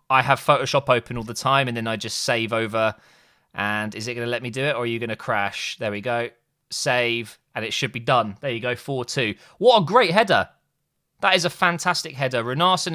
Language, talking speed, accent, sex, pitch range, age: English, 235 wpm, British, male, 120-165 Hz, 20-39